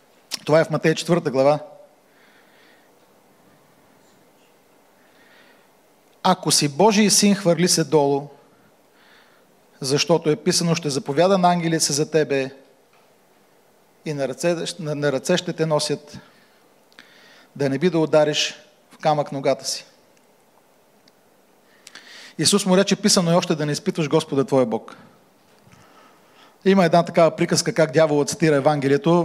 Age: 40-59